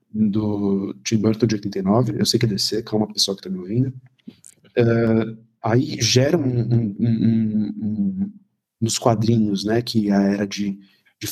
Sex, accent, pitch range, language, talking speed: male, Brazilian, 110-125 Hz, Portuguese, 180 wpm